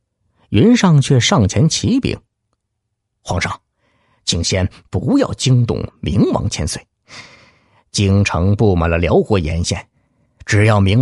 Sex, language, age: male, Chinese, 50-69